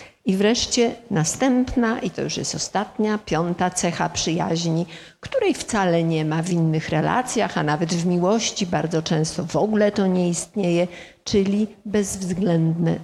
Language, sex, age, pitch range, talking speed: Polish, female, 50-69, 175-230 Hz, 145 wpm